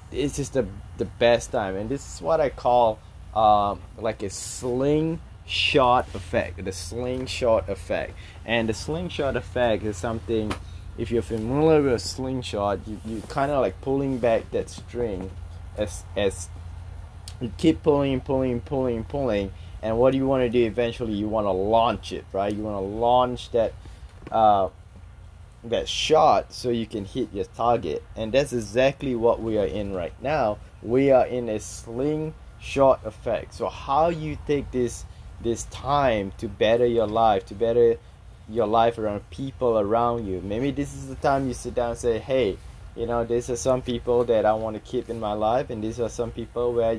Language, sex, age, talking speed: English, male, 20-39, 185 wpm